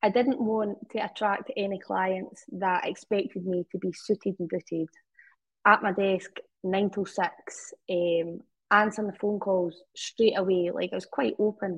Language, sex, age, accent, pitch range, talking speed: English, female, 20-39, British, 180-215 Hz, 170 wpm